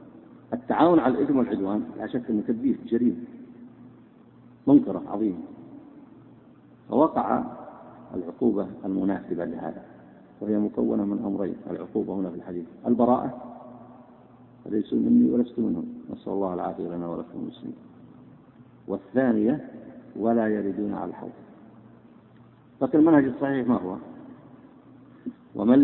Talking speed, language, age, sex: 105 wpm, Arabic, 50-69, male